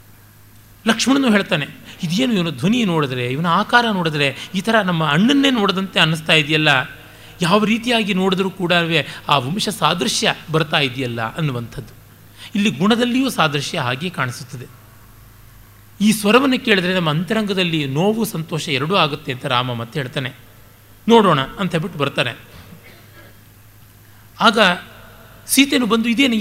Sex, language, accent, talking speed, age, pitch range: male, Kannada, native, 120 wpm, 30-49, 125-185 Hz